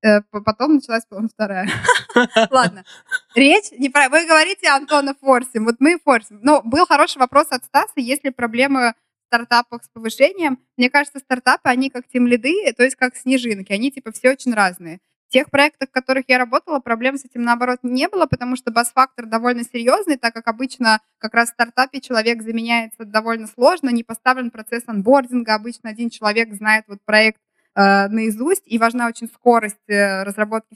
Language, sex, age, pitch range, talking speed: Russian, female, 20-39, 220-265 Hz, 170 wpm